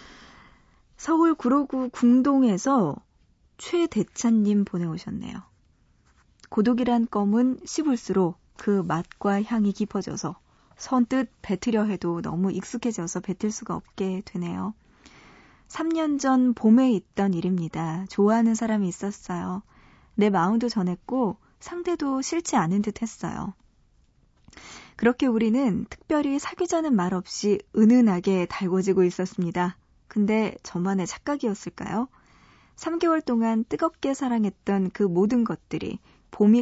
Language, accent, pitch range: Korean, native, 190-250 Hz